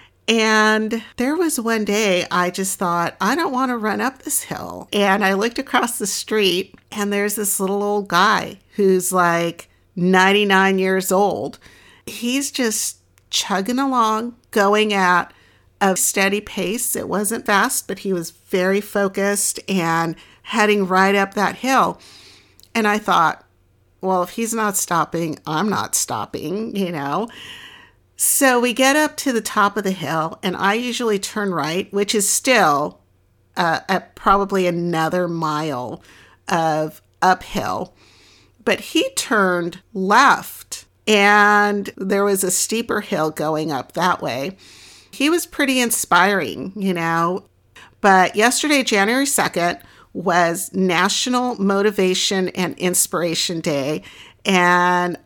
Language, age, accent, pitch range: English, 50-69, American, 180-215 Hz